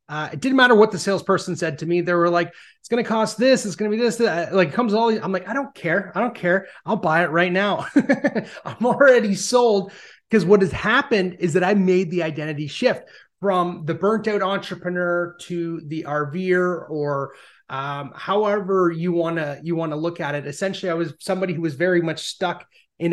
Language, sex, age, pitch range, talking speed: English, male, 30-49, 160-195 Hz, 220 wpm